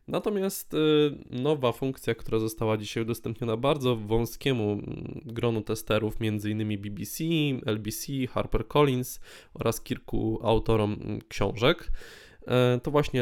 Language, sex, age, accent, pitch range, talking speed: Polish, male, 20-39, native, 110-135 Hz, 95 wpm